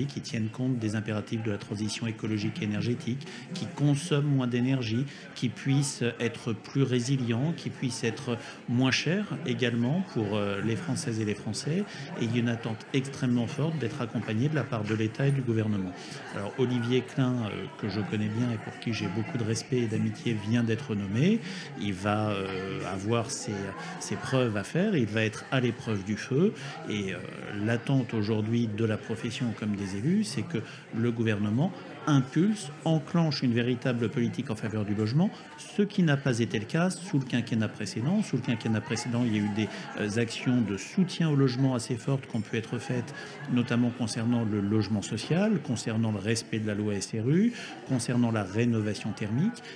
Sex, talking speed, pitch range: male, 180 wpm, 110-135 Hz